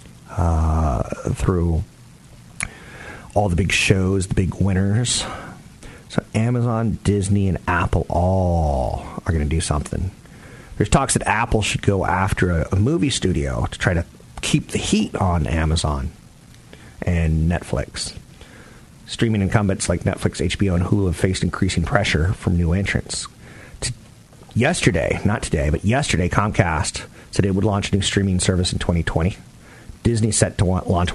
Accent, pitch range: American, 90-115 Hz